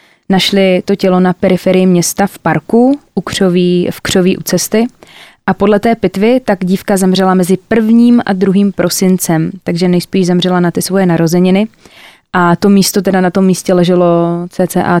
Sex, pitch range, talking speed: female, 180-215 Hz, 170 wpm